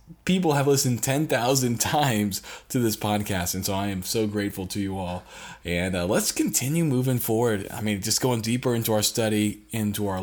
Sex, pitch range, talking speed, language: male, 105-170 Hz, 195 wpm, English